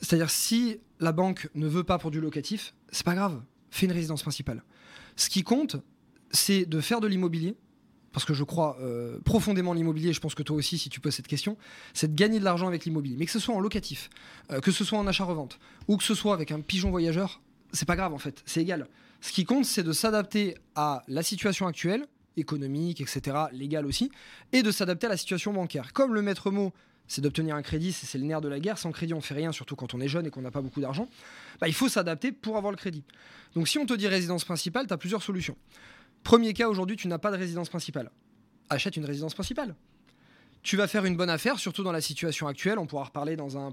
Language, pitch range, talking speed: French, 150-200 Hz, 245 wpm